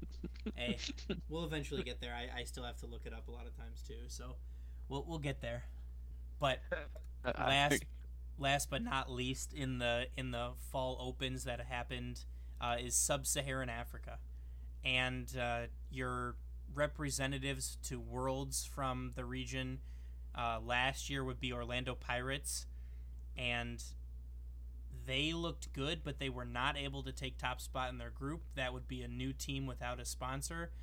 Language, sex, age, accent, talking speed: English, male, 20-39, American, 160 wpm